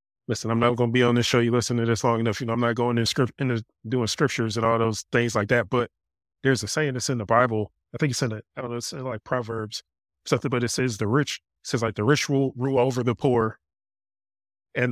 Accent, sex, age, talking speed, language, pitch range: American, male, 30-49, 280 wpm, English, 105-130 Hz